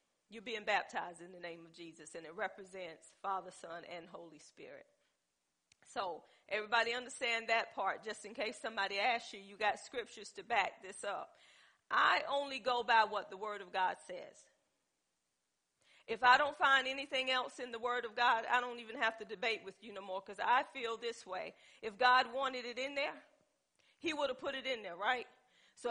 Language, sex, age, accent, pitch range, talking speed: English, female, 40-59, American, 200-245 Hz, 195 wpm